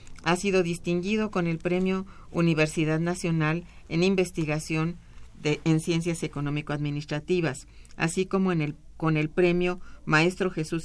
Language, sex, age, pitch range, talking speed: Spanish, female, 40-59, 150-180 Hz, 110 wpm